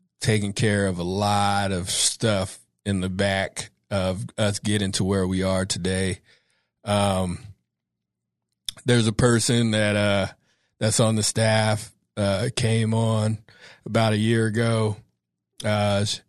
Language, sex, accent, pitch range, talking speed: English, male, American, 100-120 Hz, 135 wpm